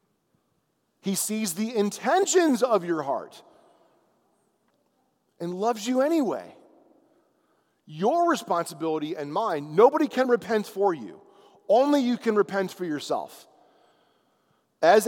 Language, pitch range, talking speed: English, 150-220 Hz, 105 wpm